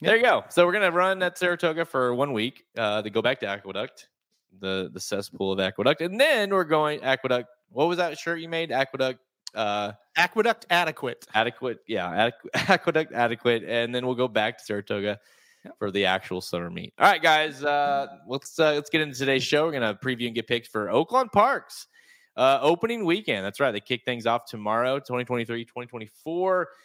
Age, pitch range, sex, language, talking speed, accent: 20-39, 105-155 Hz, male, English, 195 wpm, American